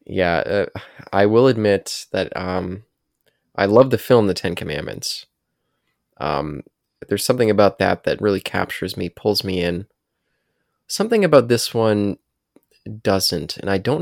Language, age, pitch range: English, 20-39, 95-110 Hz